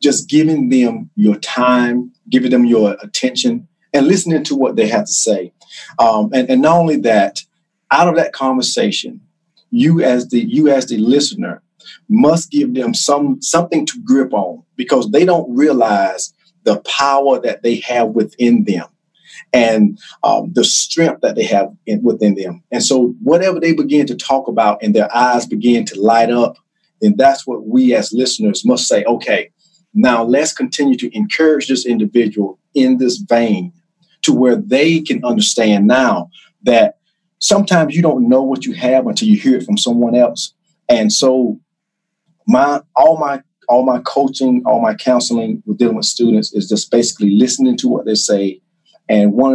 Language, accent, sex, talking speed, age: English, American, male, 175 wpm, 40-59